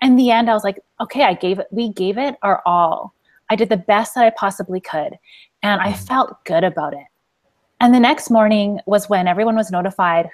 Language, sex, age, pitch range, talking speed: English, female, 20-39, 190-240 Hz, 220 wpm